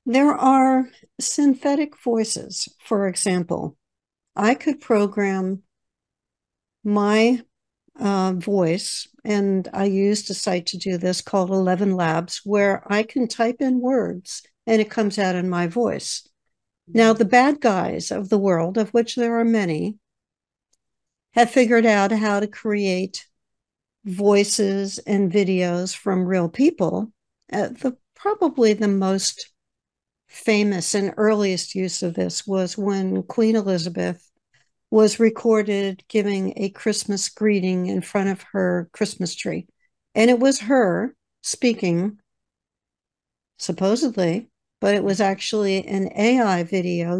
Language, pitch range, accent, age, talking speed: English, 190-230 Hz, American, 60-79, 125 wpm